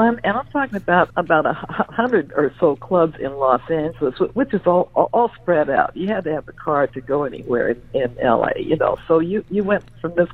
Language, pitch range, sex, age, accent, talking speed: English, 175-230 Hz, female, 60-79, American, 225 wpm